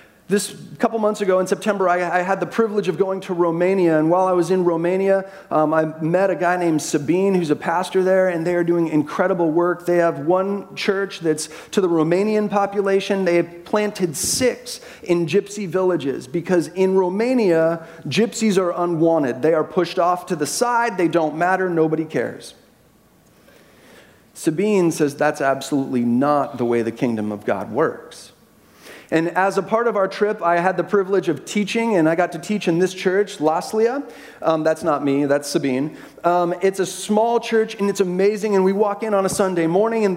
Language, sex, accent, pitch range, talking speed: English, male, American, 170-225 Hz, 195 wpm